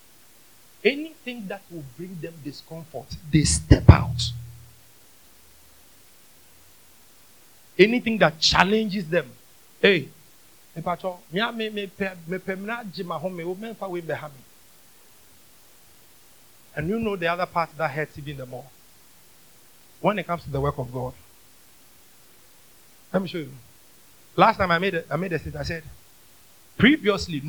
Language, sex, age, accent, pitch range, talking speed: English, male, 50-69, Nigerian, 135-185 Hz, 110 wpm